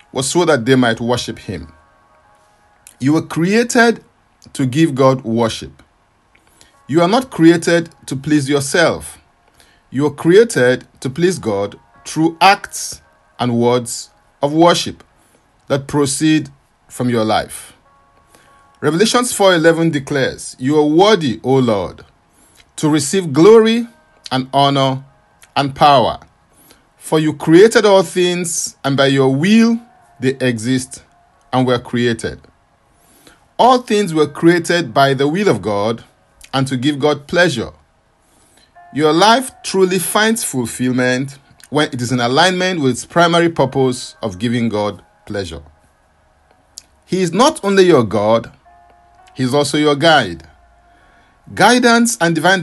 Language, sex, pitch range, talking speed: English, male, 120-170 Hz, 130 wpm